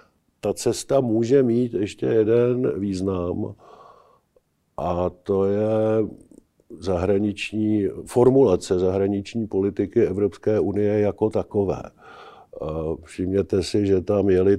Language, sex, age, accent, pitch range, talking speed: Czech, male, 50-69, native, 95-110 Hz, 95 wpm